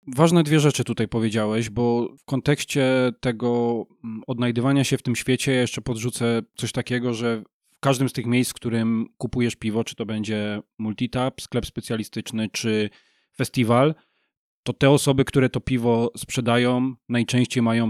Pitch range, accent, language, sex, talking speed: 115-130 Hz, native, Polish, male, 150 wpm